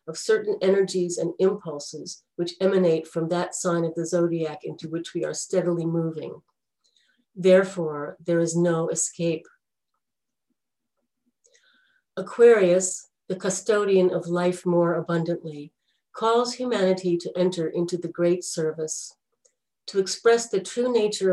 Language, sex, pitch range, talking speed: English, female, 165-205 Hz, 125 wpm